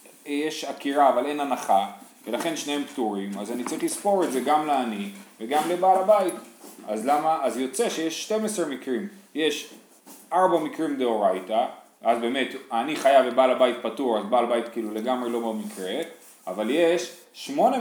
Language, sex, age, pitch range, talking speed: Hebrew, male, 30-49, 130-200 Hz, 160 wpm